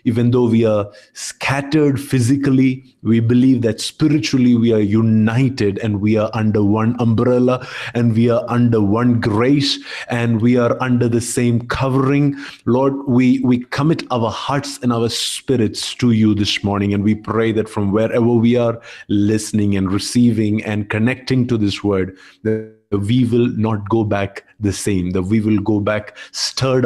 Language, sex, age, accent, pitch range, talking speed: English, male, 30-49, Indian, 110-130 Hz, 170 wpm